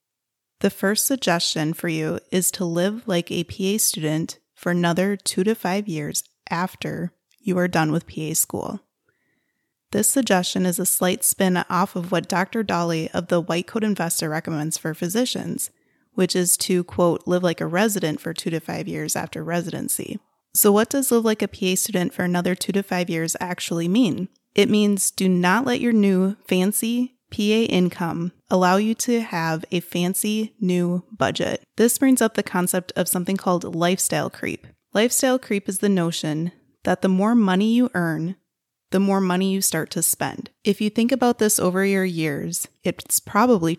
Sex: female